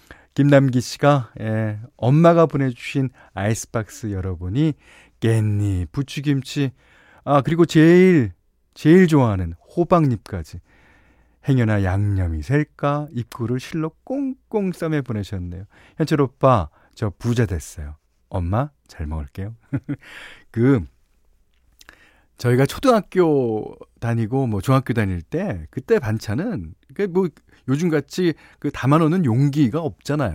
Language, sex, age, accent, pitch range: Korean, male, 40-59, native, 100-150 Hz